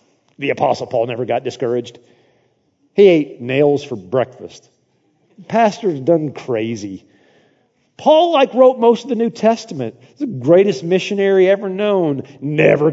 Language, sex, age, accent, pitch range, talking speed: English, male, 40-59, American, 120-150 Hz, 130 wpm